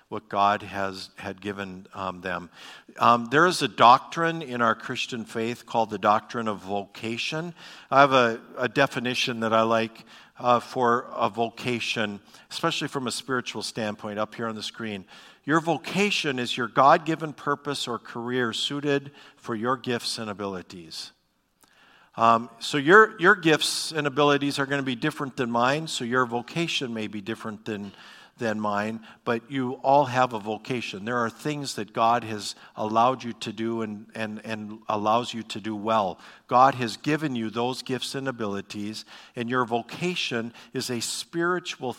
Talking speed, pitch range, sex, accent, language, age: 170 wpm, 110-140 Hz, male, American, English, 50-69